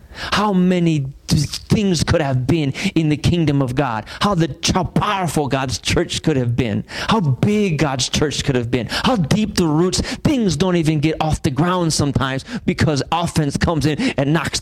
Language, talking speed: English, 185 wpm